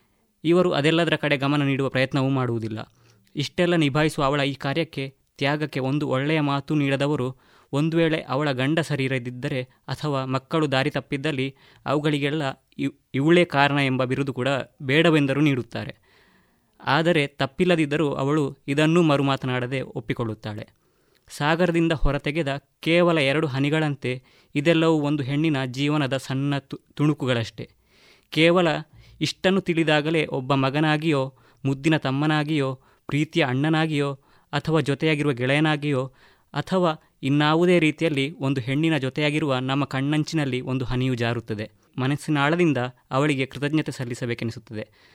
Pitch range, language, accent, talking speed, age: 130-155 Hz, Kannada, native, 105 wpm, 20-39